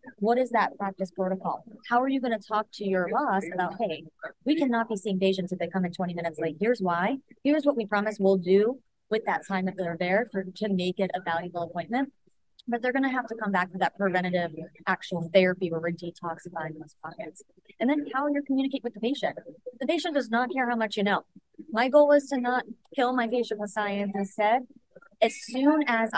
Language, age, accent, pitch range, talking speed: English, 30-49, American, 185-245 Hz, 225 wpm